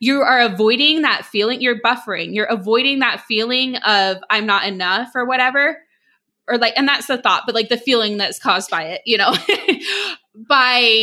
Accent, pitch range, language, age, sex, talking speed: American, 205-255 Hz, English, 20-39, female, 185 wpm